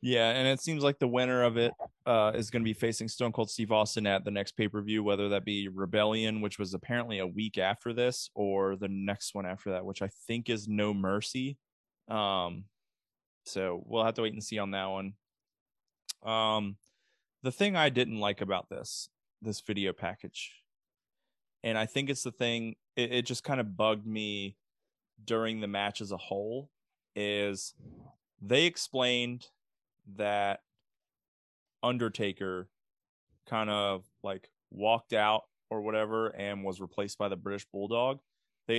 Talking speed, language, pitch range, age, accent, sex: 165 wpm, English, 100-120 Hz, 20-39, American, male